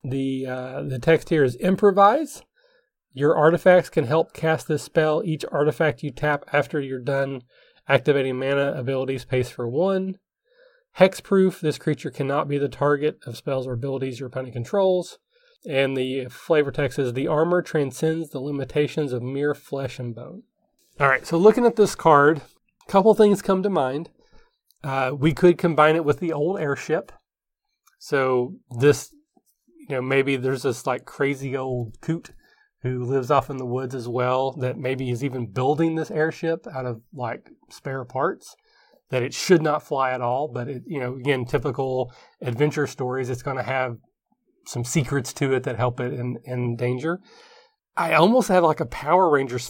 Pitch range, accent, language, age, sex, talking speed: 130-165 Hz, American, English, 30-49, male, 175 wpm